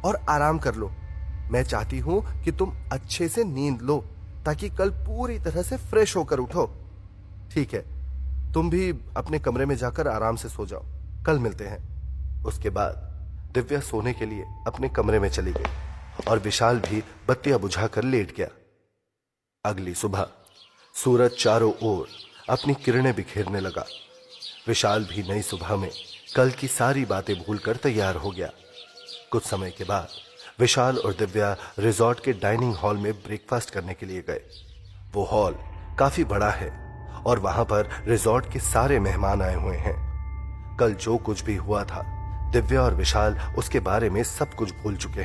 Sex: male